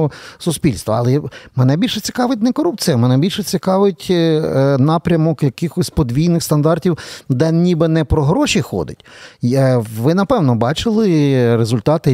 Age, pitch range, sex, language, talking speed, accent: 40-59, 125-165 Hz, male, Ukrainian, 120 wpm, native